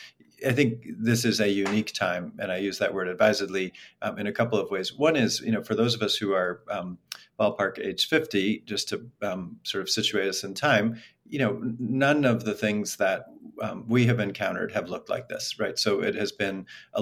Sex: male